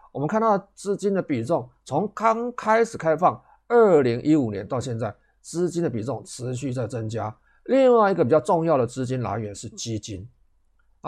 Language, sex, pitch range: Chinese, male, 120-200 Hz